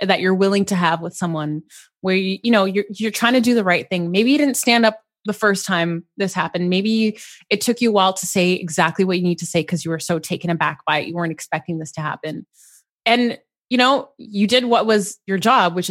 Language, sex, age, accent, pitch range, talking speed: English, female, 20-39, American, 170-215 Hz, 255 wpm